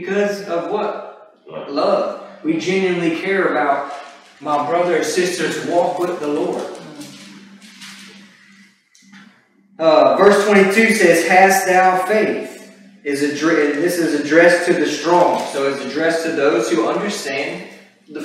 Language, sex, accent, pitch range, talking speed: English, male, American, 165-210 Hz, 125 wpm